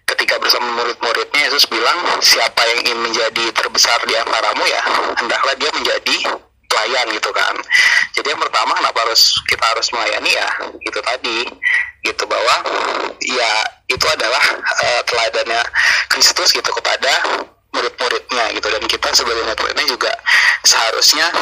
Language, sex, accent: Indonesian, male, native